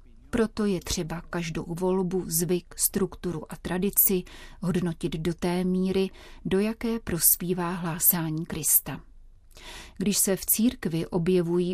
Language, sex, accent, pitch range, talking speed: Czech, female, native, 170-195 Hz, 120 wpm